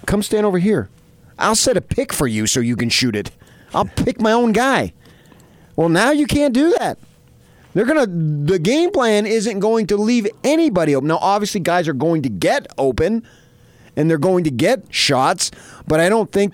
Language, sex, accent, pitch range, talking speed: English, male, American, 150-245 Hz, 200 wpm